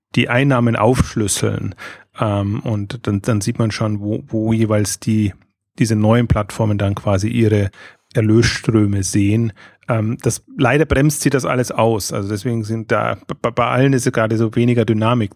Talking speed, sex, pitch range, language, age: 150 wpm, male, 105-125 Hz, German, 30-49